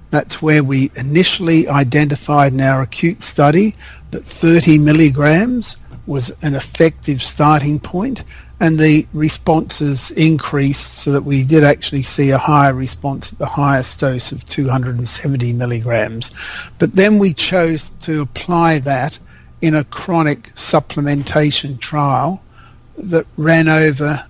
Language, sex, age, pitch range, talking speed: English, male, 50-69, 135-160 Hz, 130 wpm